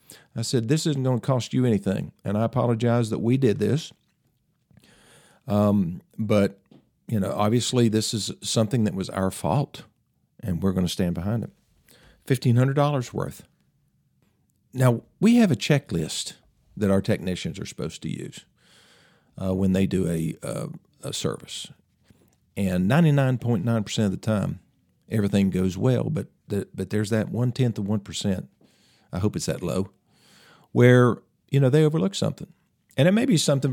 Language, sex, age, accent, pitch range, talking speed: English, male, 50-69, American, 100-130 Hz, 155 wpm